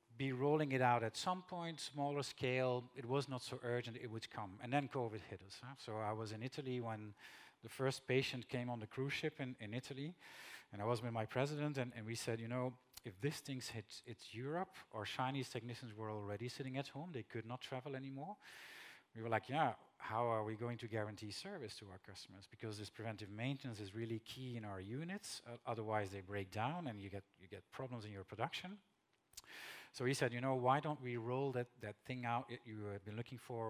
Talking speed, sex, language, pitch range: 225 wpm, male, English, 110-135 Hz